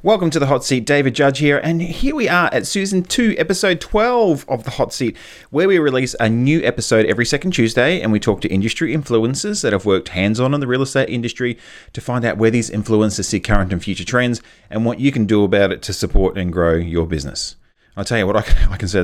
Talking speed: 245 wpm